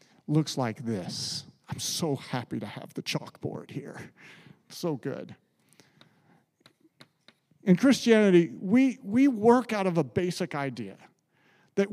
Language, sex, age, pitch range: English, male, 50-69, 155-215 Hz